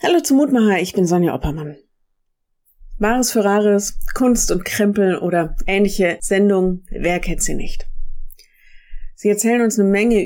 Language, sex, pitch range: German, female, 170-205 Hz